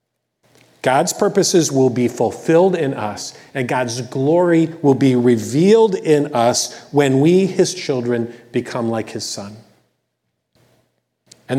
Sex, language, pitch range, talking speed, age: male, English, 120-180 Hz, 125 wpm, 40-59